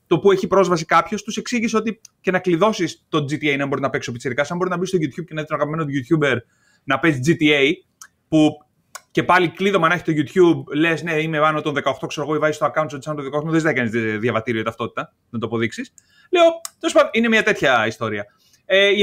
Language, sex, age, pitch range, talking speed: Greek, male, 30-49, 155-215 Hz, 230 wpm